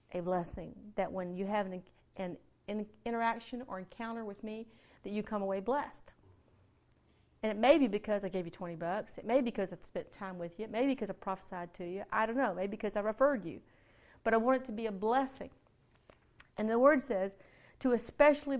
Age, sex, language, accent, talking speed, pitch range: 40-59, female, English, American, 220 wpm, 210-270 Hz